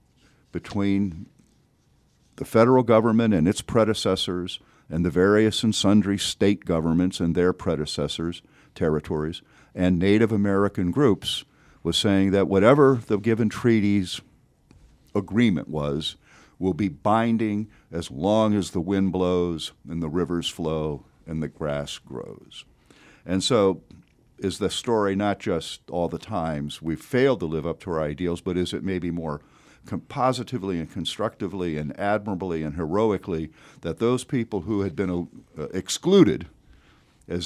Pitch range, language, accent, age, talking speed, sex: 85-110 Hz, English, American, 50-69, 140 wpm, male